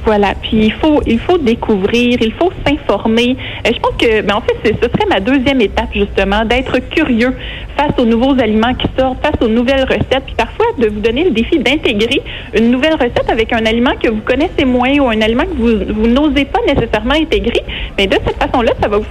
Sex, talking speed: female, 220 wpm